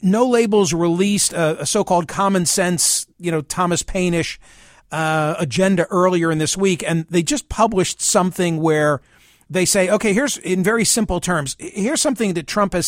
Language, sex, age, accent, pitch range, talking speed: English, male, 50-69, American, 160-195 Hz, 165 wpm